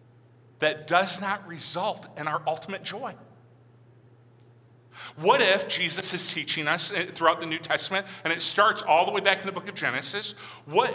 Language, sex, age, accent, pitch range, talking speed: English, male, 40-59, American, 125-180 Hz, 170 wpm